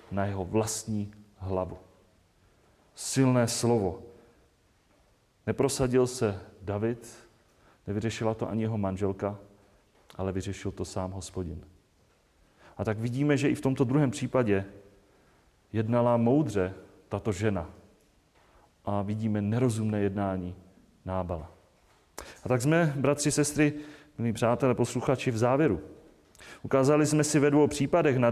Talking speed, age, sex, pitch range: 115 wpm, 30-49, male, 105-135 Hz